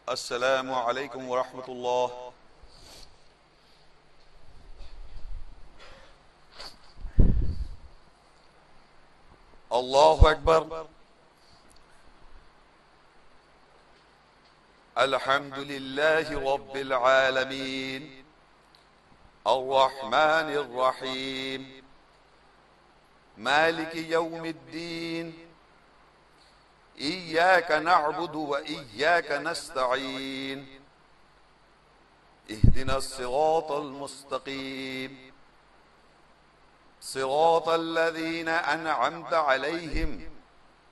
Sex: male